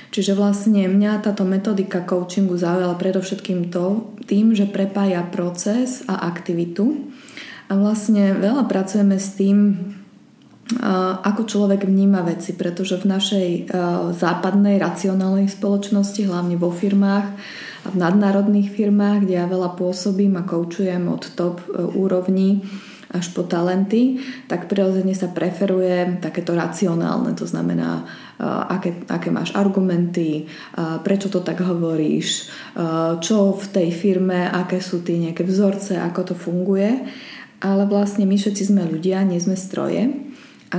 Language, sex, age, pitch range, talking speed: Slovak, female, 20-39, 175-200 Hz, 135 wpm